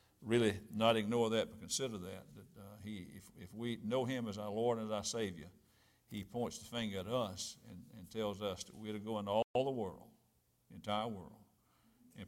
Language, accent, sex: English, American, male